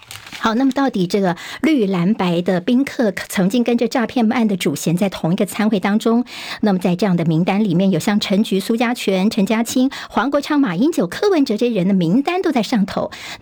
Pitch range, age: 185-245 Hz, 50-69